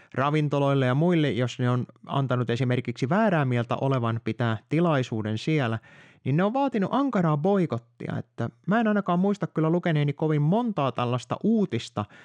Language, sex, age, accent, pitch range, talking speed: Finnish, male, 30-49, native, 125-175 Hz, 150 wpm